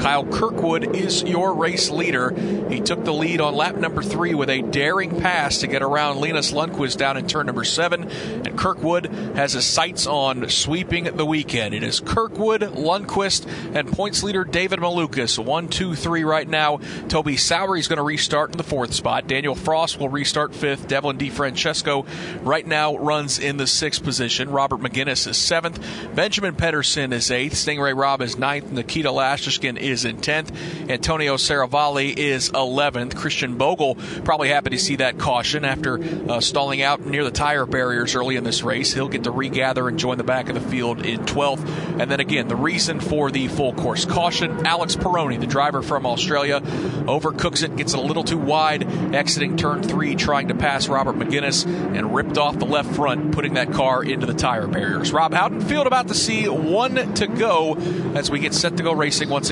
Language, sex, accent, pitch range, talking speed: English, male, American, 135-170 Hz, 195 wpm